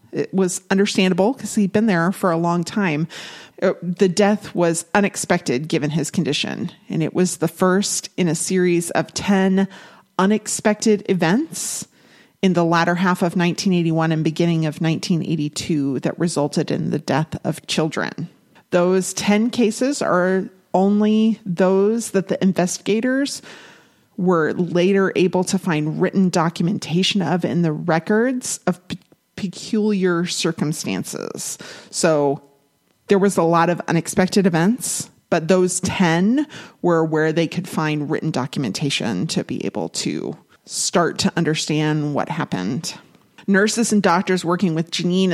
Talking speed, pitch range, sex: 135 wpm, 165-195 Hz, female